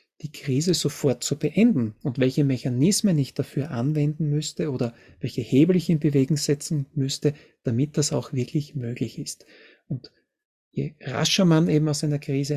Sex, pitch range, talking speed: male, 135-160 Hz, 160 wpm